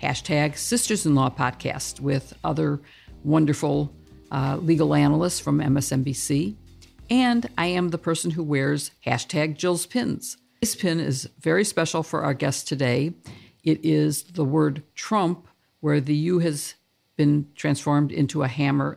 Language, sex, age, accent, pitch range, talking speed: English, female, 60-79, American, 140-165 Hz, 145 wpm